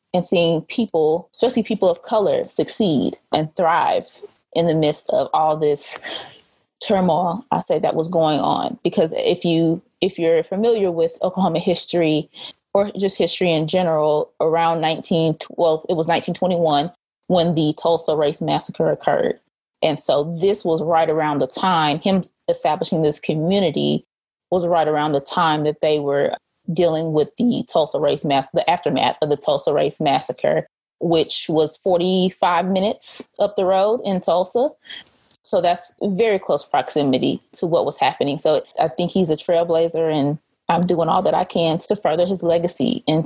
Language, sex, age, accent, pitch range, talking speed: English, female, 20-39, American, 160-190 Hz, 160 wpm